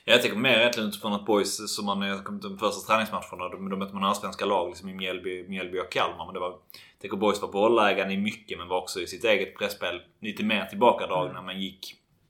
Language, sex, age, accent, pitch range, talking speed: Swedish, male, 20-39, native, 90-100 Hz, 245 wpm